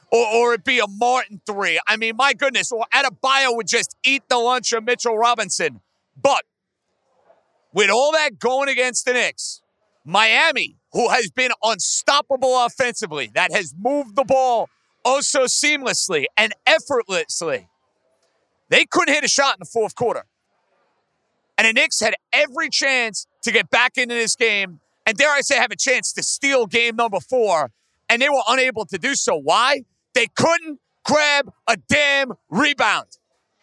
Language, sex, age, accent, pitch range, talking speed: English, male, 40-59, American, 225-280 Hz, 165 wpm